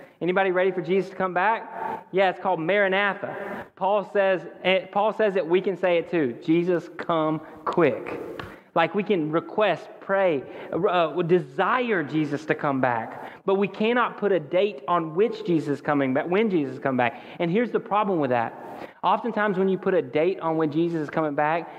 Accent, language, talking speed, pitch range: American, English, 195 wpm, 155-190 Hz